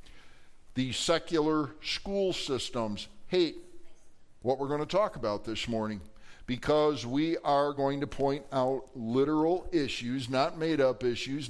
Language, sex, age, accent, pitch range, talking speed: English, male, 50-69, American, 125-150 Hz, 130 wpm